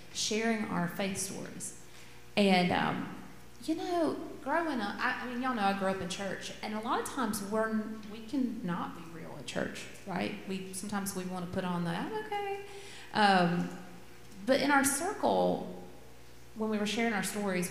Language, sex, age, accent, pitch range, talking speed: English, female, 30-49, American, 170-240 Hz, 185 wpm